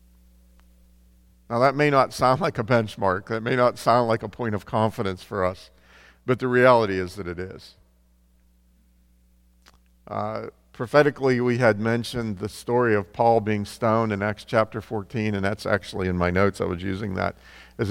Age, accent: 50-69, American